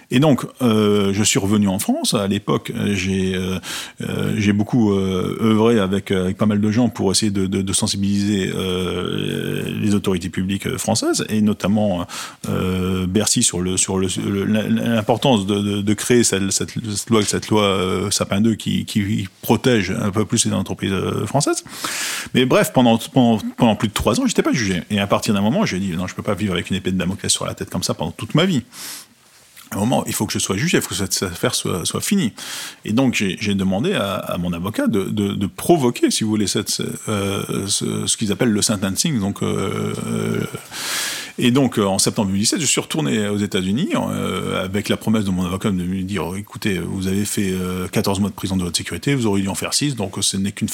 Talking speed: 225 wpm